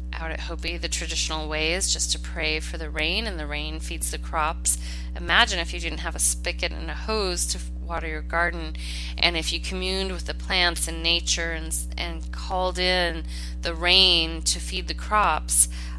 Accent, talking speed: American, 195 wpm